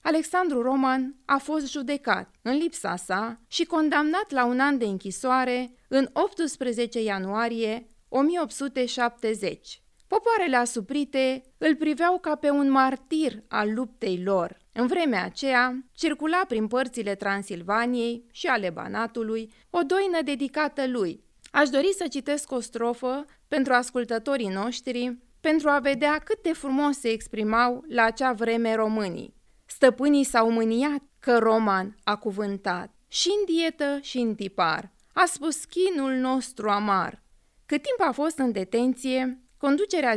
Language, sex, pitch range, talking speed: English, female, 225-285 Hz, 135 wpm